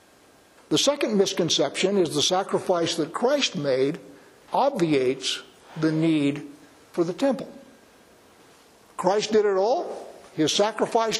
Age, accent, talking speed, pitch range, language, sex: 60-79, American, 115 wpm, 150-195 Hz, English, male